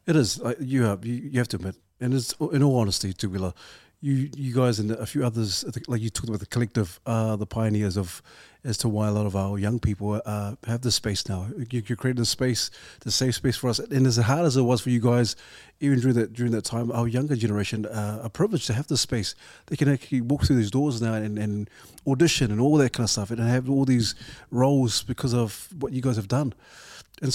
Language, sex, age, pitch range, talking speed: English, male, 30-49, 110-130 Hz, 240 wpm